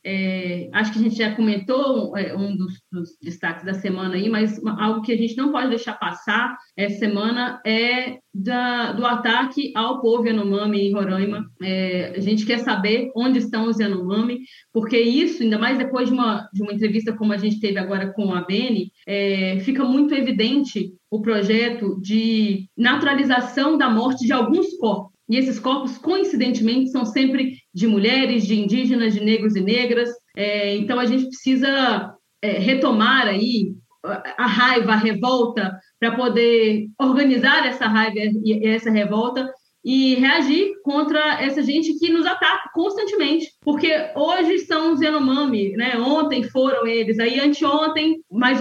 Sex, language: female, Portuguese